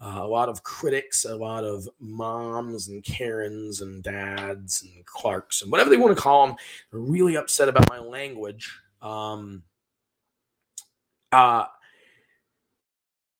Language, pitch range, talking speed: English, 110-165 Hz, 135 wpm